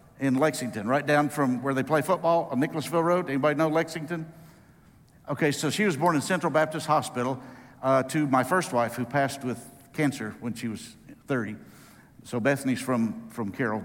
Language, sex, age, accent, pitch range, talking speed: English, male, 60-79, American, 115-145 Hz, 180 wpm